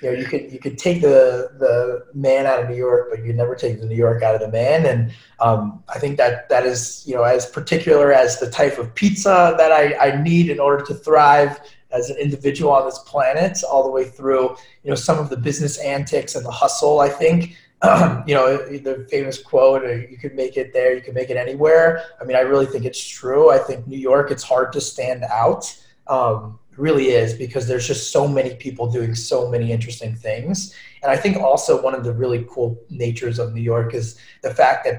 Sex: male